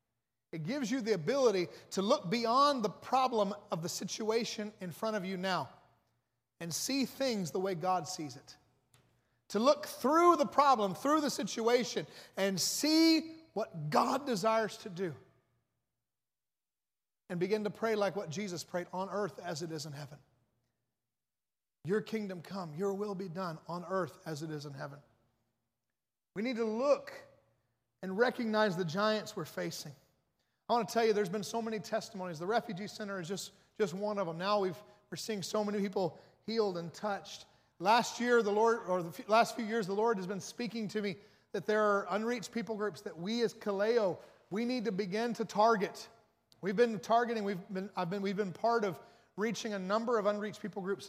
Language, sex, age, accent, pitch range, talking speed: English, male, 40-59, American, 175-220 Hz, 185 wpm